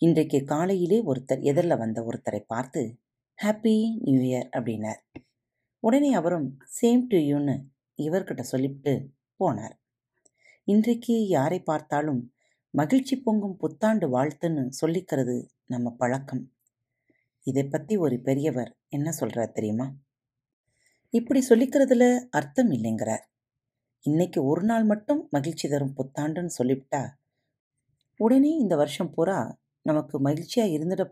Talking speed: 105 wpm